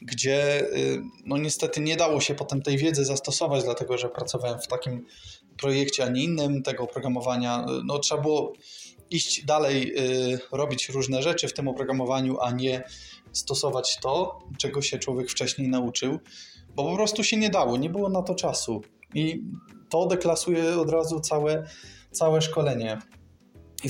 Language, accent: Polish, native